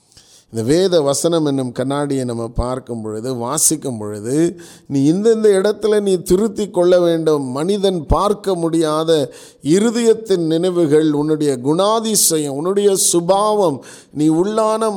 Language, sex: Tamil, male